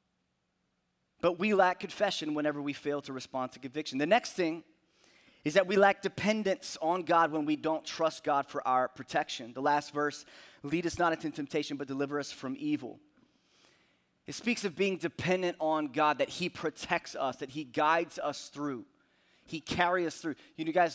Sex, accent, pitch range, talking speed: male, American, 135-165 Hz, 185 wpm